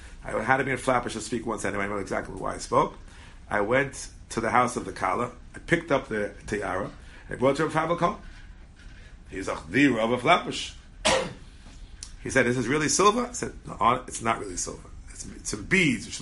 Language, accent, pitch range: English, American, 90-140 Hz